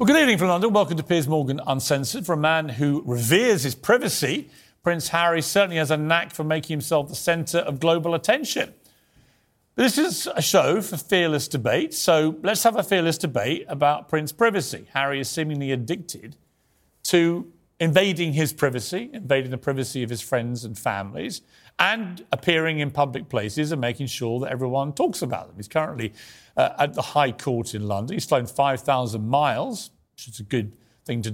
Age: 40-59